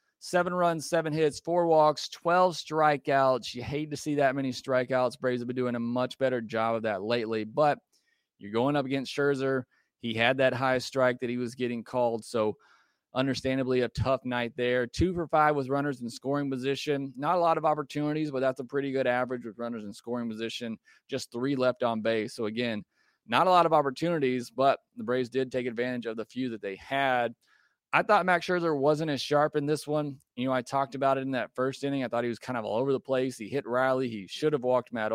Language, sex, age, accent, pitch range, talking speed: English, male, 30-49, American, 120-145 Hz, 230 wpm